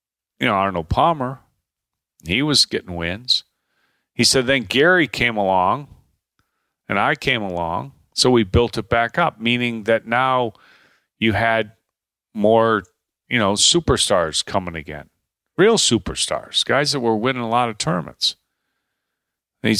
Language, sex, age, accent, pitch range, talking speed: English, male, 40-59, American, 95-130 Hz, 140 wpm